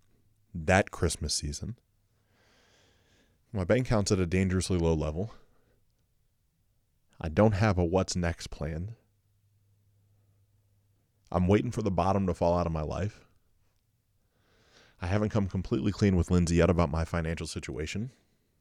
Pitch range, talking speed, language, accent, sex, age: 90-110 Hz, 130 wpm, English, American, male, 30-49